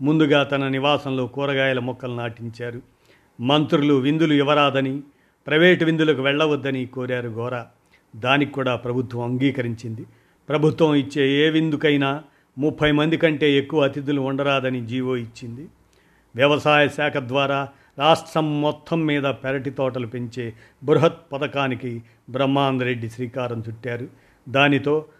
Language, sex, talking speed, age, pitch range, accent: Telugu, male, 105 wpm, 50-69, 125-145 Hz, native